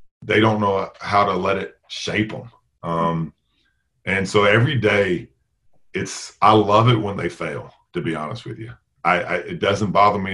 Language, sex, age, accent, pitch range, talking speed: English, male, 40-59, American, 85-115 Hz, 185 wpm